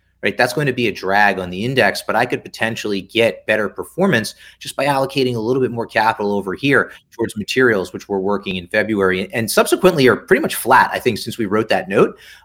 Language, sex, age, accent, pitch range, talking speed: English, male, 30-49, American, 105-135 Hz, 225 wpm